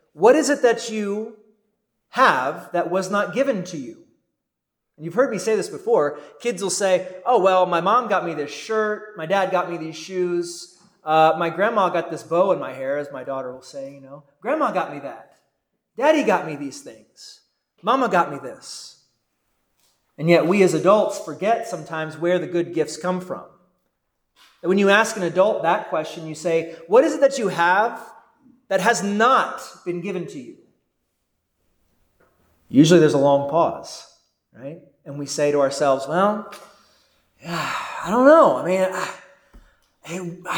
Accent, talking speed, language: American, 175 wpm, English